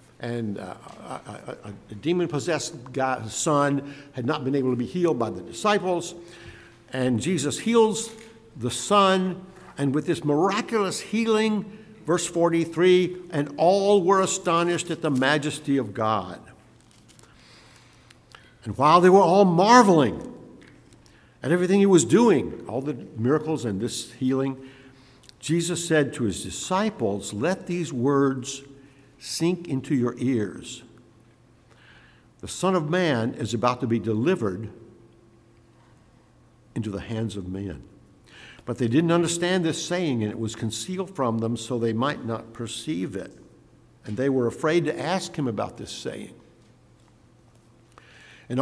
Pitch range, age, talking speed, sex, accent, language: 115-175 Hz, 60-79, 135 wpm, male, American, English